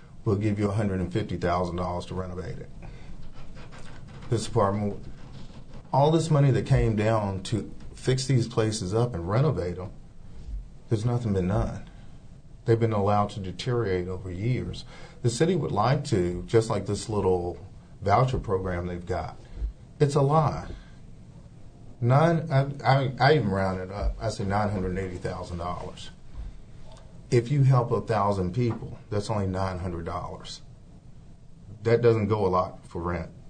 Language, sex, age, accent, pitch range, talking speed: English, male, 40-59, American, 95-120 Hz, 155 wpm